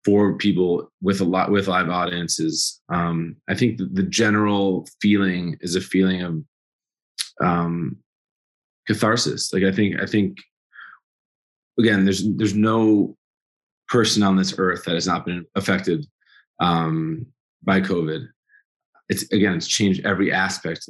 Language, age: English, 20-39